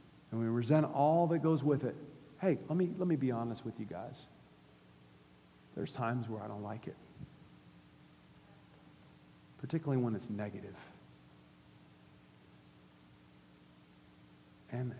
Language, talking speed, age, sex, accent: English, 115 wpm, 50-69, male, American